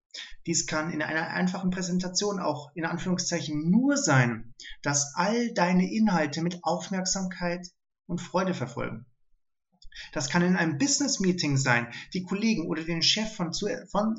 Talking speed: 145 wpm